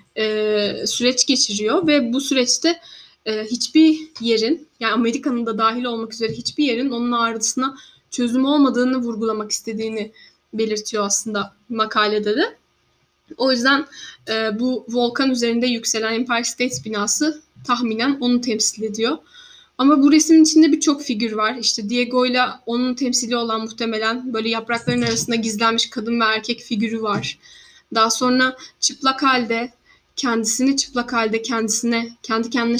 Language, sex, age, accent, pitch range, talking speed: Turkish, female, 10-29, native, 225-265 Hz, 125 wpm